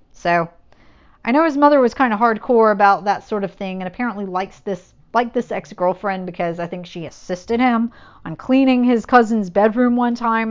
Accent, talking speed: American, 190 wpm